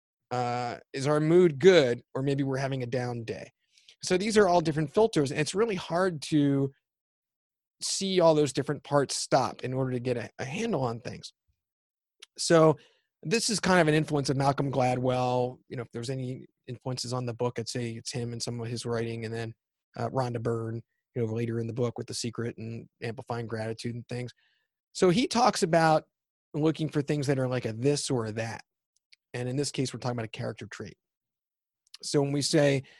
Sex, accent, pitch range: male, American, 120-150 Hz